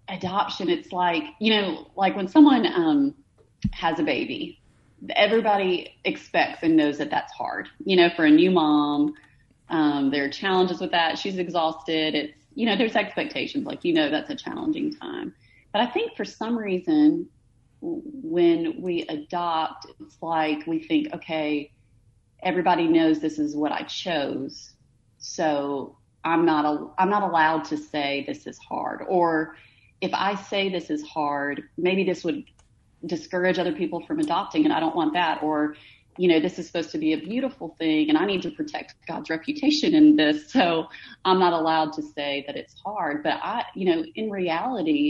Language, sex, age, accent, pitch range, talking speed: English, female, 30-49, American, 150-235 Hz, 175 wpm